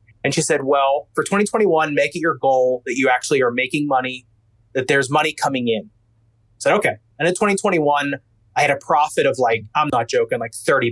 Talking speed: 210 wpm